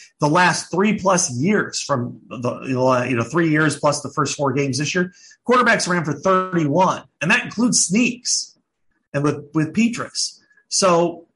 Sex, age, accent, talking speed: male, 40-59, American, 160 wpm